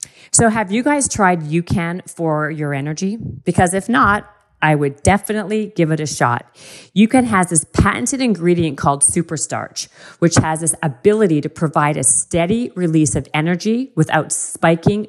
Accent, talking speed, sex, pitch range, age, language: American, 155 wpm, female, 150-195 Hz, 40-59, English